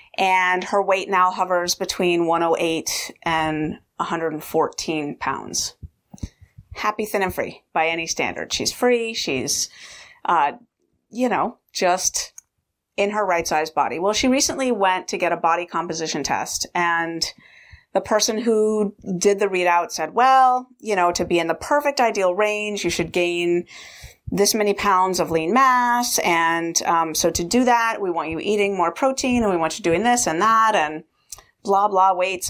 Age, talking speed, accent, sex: 30-49, 165 wpm, American, female